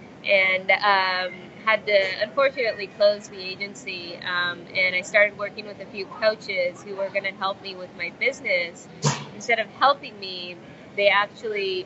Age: 20-39